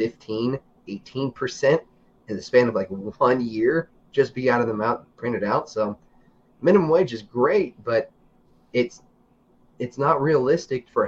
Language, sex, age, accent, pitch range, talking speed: English, male, 30-49, American, 110-140 Hz, 155 wpm